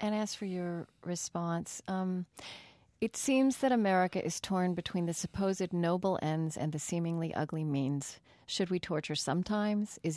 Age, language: 40-59, English